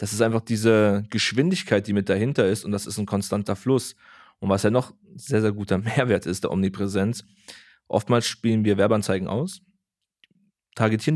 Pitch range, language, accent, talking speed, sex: 105-130 Hz, German, German, 170 wpm, male